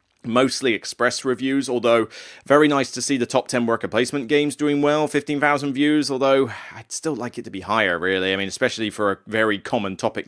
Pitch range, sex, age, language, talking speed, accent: 105-145 Hz, male, 20-39, English, 205 wpm, British